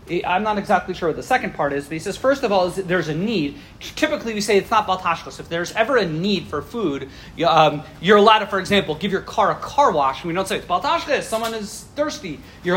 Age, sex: 30-49, male